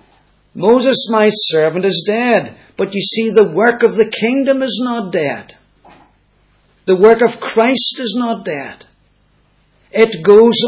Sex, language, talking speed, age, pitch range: male, English, 140 wpm, 50-69, 170-225 Hz